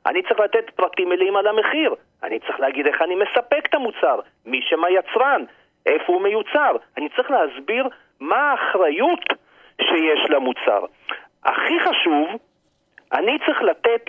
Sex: male